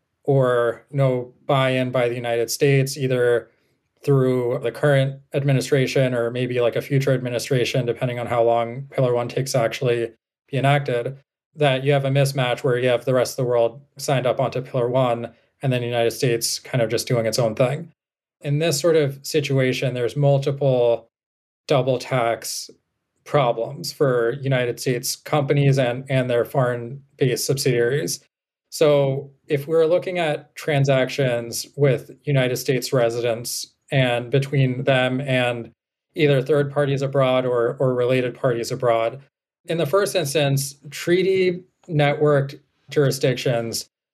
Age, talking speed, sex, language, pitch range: 20-39, 150 wpm, male, English, 120-145 Hz